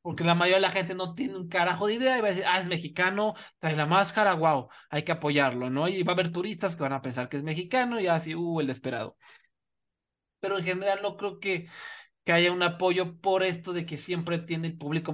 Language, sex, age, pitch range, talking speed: English, male, 30-49, 150-190 Hz, 245 wpm